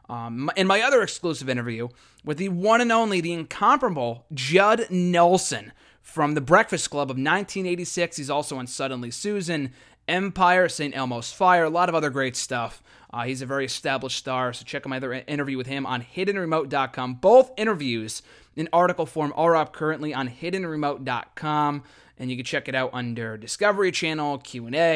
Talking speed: 175 wpm